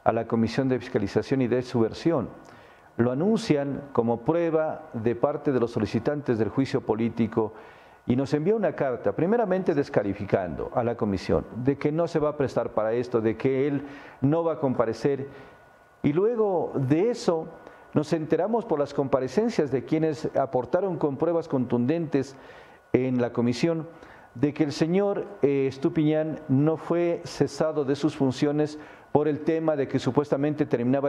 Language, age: English, 50-69